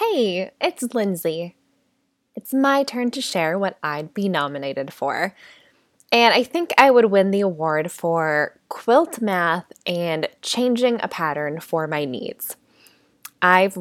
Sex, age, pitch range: female, 20-39, 170-260 Hz